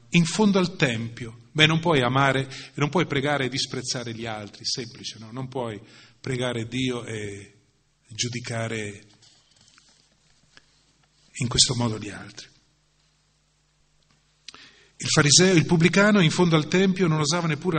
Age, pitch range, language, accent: 40-59, 130-180 Hz, Italian, native